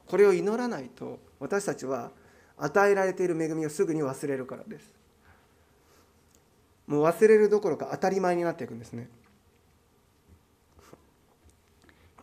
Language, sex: Japanese, male